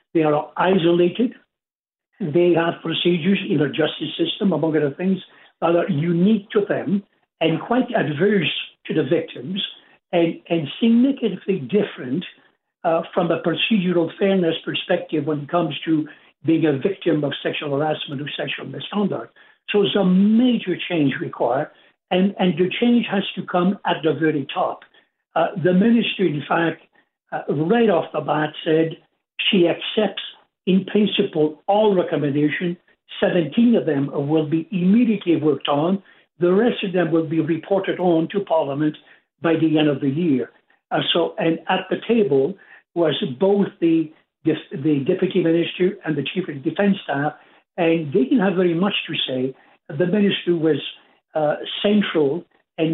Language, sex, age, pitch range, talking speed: English, male, 60-79, 155-195 Hz, 155 wpm